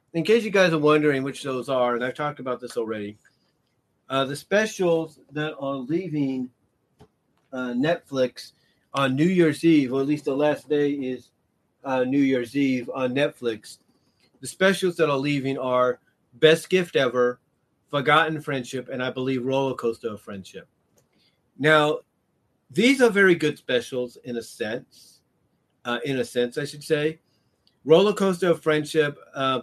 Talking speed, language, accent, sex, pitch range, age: 155 wpm, English, American, male, 125-150 Hz, 40-59